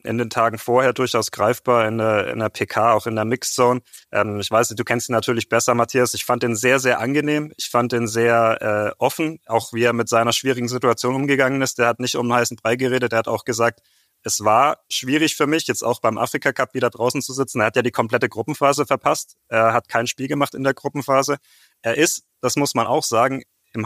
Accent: German